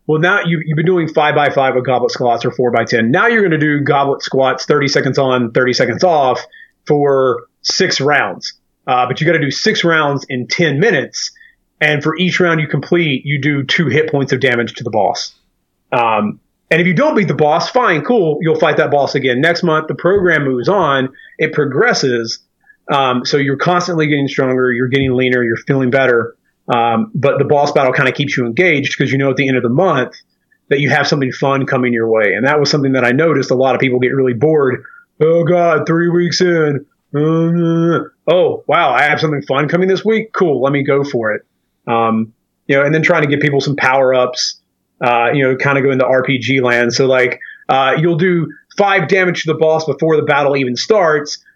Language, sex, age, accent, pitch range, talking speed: English, male, 30-49, American, 130-165 Hz, 220 wpm